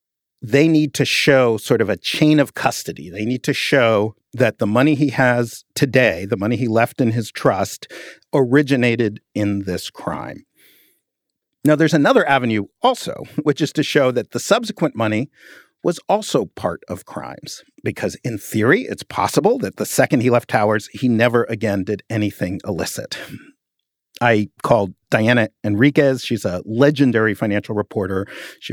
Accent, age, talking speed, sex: American, 50-69, 160 wpm, male